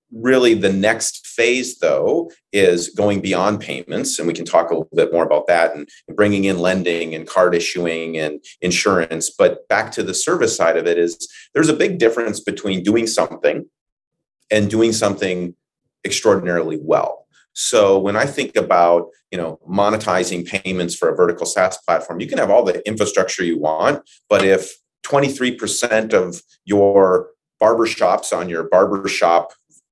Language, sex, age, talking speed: English, male, 30-49, 165 wpm